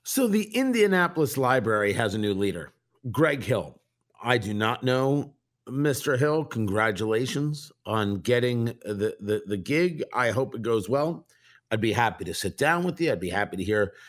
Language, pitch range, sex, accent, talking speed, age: English, 120-160 Hz, male, American, 175 wpm, 50-69